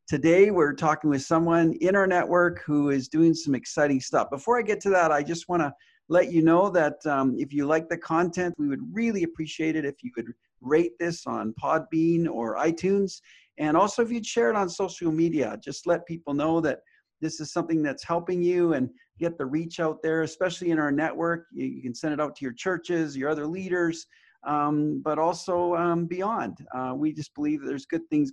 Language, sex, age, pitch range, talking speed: English, male, 40-59, 150-185 Hz, 215 wpm